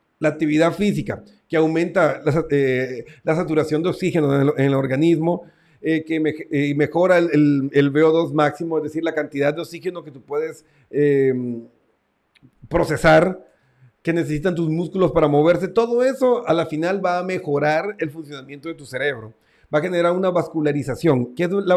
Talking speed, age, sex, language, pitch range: 165 wpm, 40-59, male, Spanish, 145-180 Hz